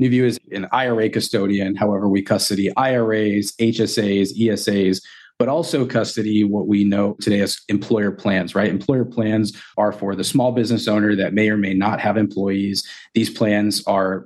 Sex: male